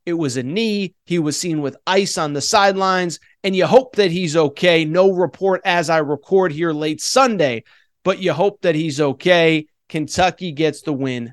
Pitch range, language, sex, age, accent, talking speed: 175-230 Hz, English, male, 30-49, American, 190 wpm